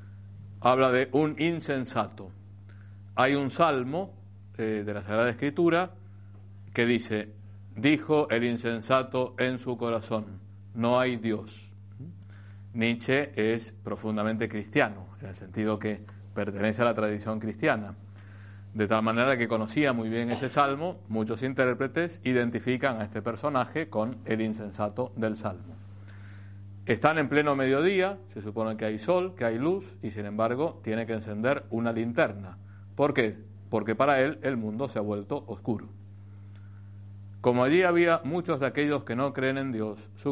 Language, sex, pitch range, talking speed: Spanish, male, 100-130 Hz, 145 wpm